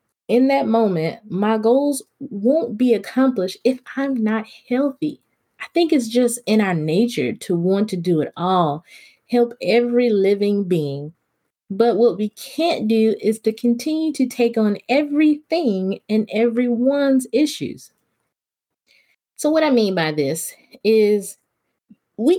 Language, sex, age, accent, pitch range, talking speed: English, female, 20-39, American, 185-245 Hz, 140 wpm